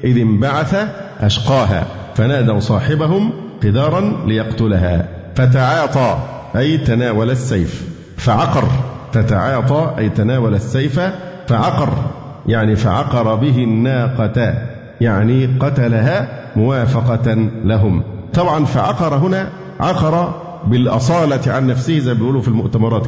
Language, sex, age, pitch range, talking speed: Arabic, male, 50-69, 110-140 Hz, 95 wpm